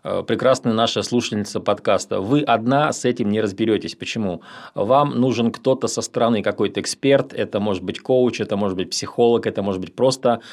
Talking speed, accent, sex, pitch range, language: 170 wpm, native, male, 105-130 Hz, Russian